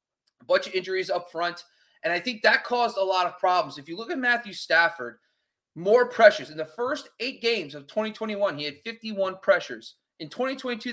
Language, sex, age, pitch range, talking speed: English, male, 30-49, 175-235 Hz, 200 wpm